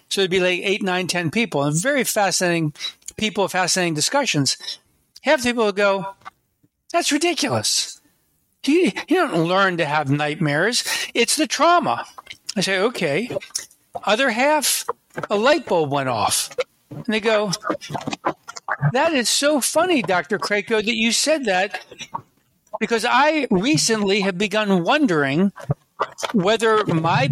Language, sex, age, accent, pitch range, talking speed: English, male, 60-79, American, 175-235 Hz, 140 wpm